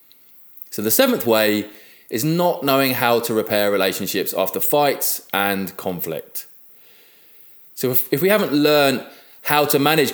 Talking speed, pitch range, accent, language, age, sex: 140 wpm, 105-135 Hz, British, English, 20-39, male